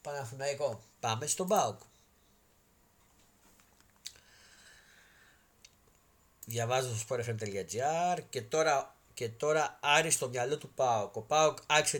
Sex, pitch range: male, 120-150 Hz